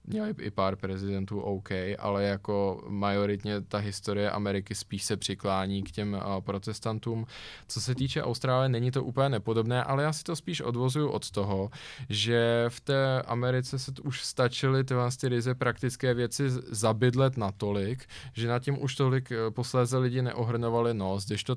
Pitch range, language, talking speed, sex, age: 105-130 Hz, Czech, 155 wpm, male, 20-39